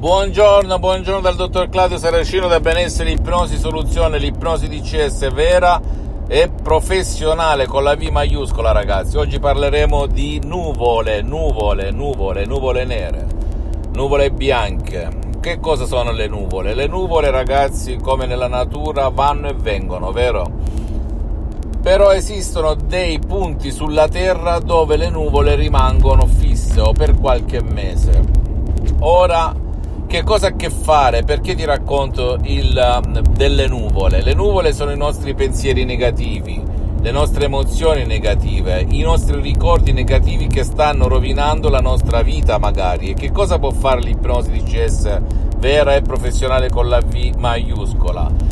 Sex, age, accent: male, 50-69, native